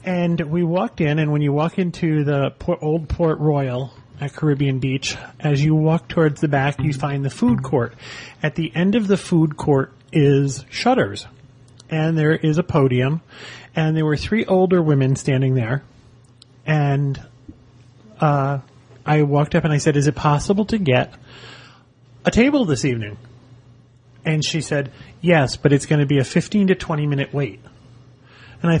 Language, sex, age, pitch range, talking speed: English, male, 30-49, 130-175 Hz, 170 wpm